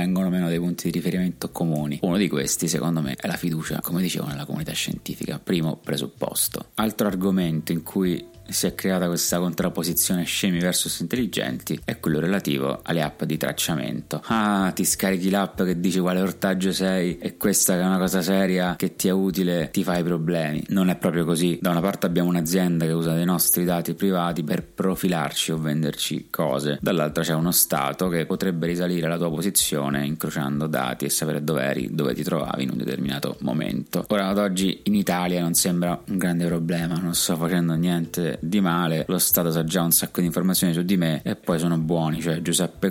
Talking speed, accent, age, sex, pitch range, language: 195 wpm, native, 30-49, male, 80-95 Hz, Italian